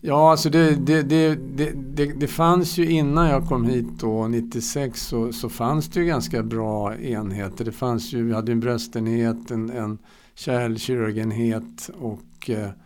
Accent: Norwegian